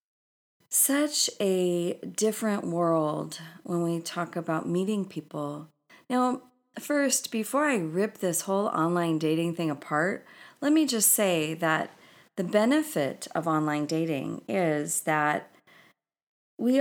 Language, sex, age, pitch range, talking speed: English, female, 40-59, 155-210 Hz, 120 wpm